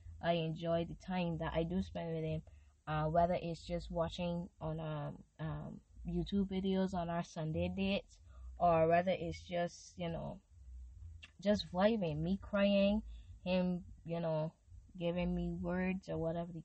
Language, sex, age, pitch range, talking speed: English, female, 10-29, 165-210 Hz, 155 wpm